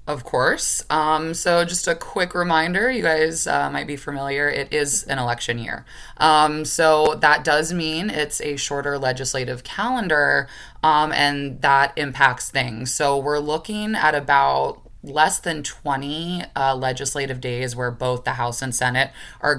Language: English